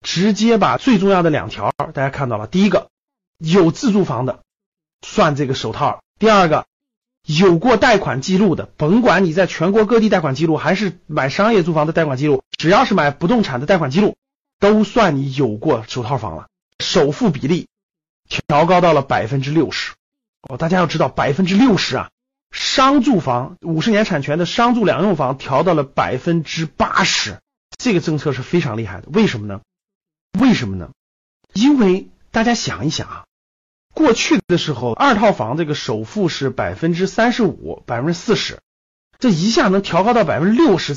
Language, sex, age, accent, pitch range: Chinese, male, 30-49, native, 140-205 Hz